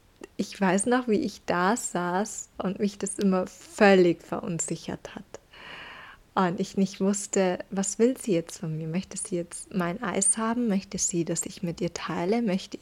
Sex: female